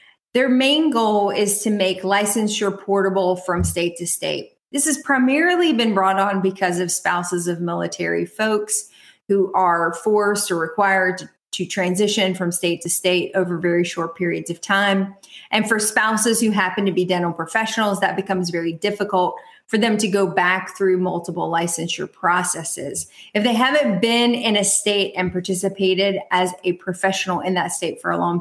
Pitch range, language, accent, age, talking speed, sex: 180-210 Hz, English, American, 30-49, 175 wpm, female